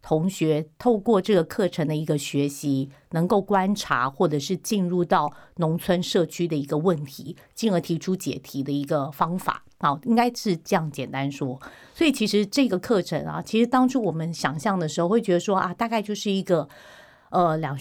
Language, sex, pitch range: Chinese, female, 150-195 Hz